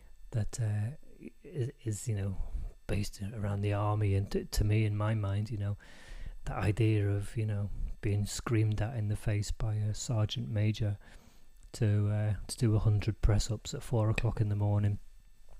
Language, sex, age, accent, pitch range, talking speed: English, male, 30-49, British, 100-125 Hz, 175 wpm